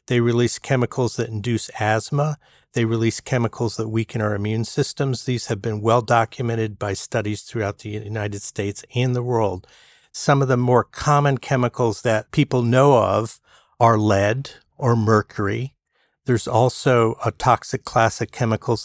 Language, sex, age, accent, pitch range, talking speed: English, male, 50-69, American, 105-125 Hz, 155 wpm